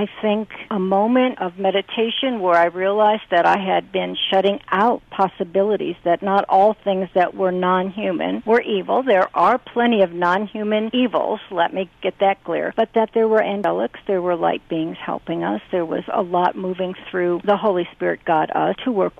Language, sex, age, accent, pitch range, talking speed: English, female, 60-79, American, 185-215 Hz, 185 wpm